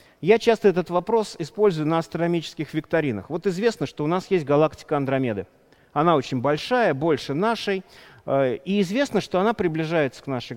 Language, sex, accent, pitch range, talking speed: Russian, male, native, 145-195 Hz, 160 wpm